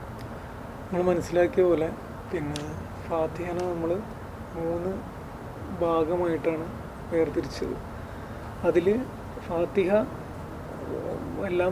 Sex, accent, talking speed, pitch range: male, native, 60 wpm, 150-180 Hz